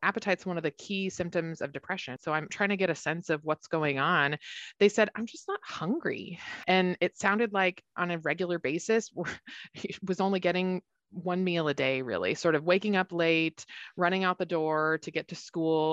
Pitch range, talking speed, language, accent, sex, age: 155-190 Hz, 205 wpm, English, American, female, 20-39